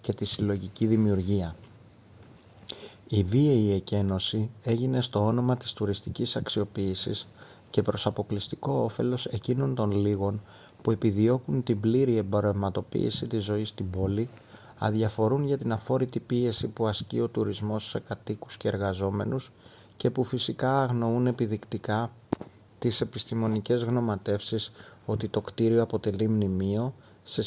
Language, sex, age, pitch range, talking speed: Greek, male, 30-49, 100-115 Hz, 120 wpm